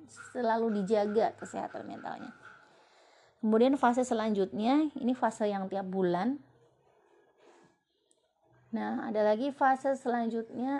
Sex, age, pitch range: female, 30-49, 155-230 Hz